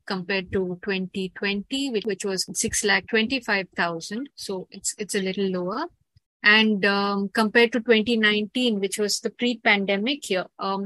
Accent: Indian